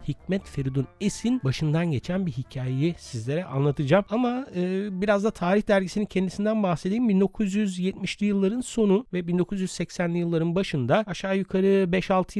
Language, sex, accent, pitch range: Turkish, male, native, 130-190 Hz